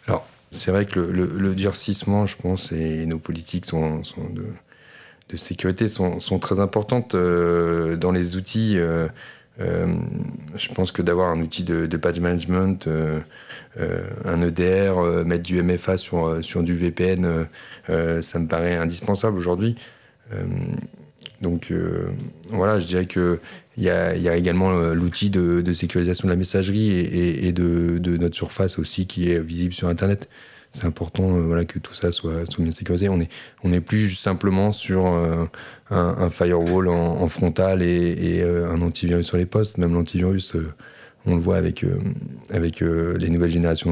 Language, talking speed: French, 180 wpm